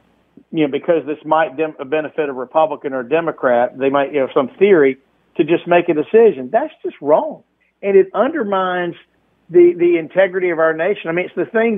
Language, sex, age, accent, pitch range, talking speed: English, male, 50-69, American, 140-190 Hz, 200 wpm